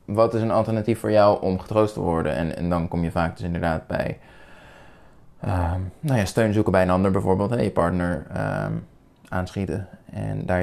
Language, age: Dutch, 20-39